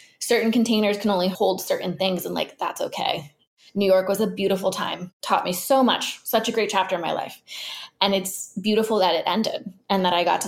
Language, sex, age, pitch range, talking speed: English, female, 20-39, 180-195 Hz, 225 wpm